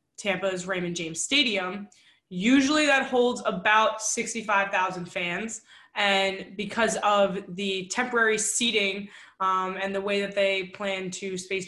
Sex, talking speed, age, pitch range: female, 135 wpm, 20-39, 185-215 Hz